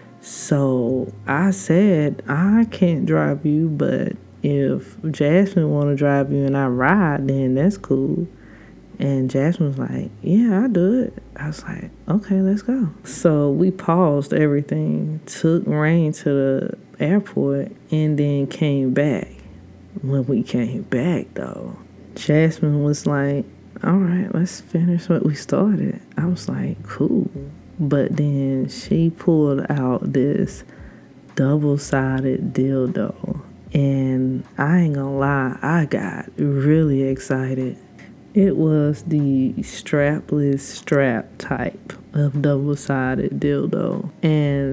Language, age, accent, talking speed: English, 20-39, American, 125 wpm